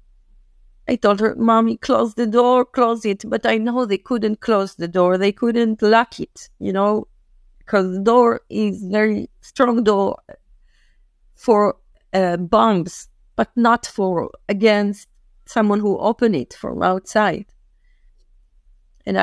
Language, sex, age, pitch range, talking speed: English, female, 30-49, 200-240 Hz, 135 wpm